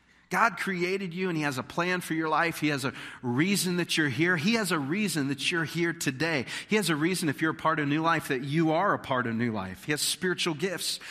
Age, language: 40-59, English